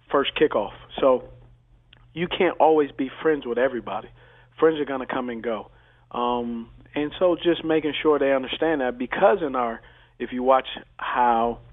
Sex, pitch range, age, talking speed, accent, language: male, 120-150 Hz, 40-59, 170 wpm, American, English